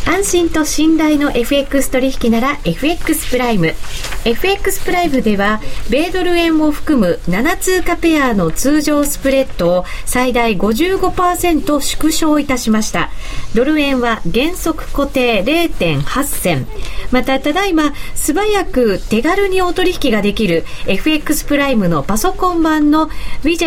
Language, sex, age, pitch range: Japanese, female, 40-59, 230-335 Hz